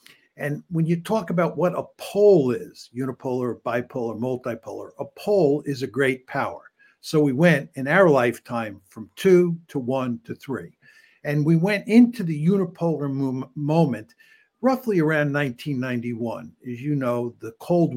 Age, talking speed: 60-79, 150 wpm